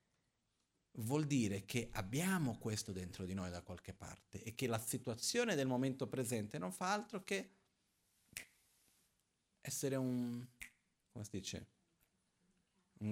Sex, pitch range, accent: male, 100-130 Hz, native